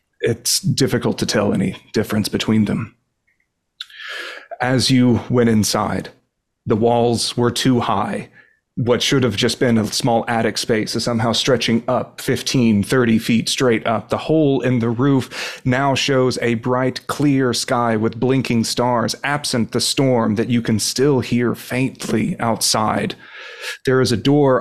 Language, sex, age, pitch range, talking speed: English, male, 30-49, 115-130 Hz, 155 wpm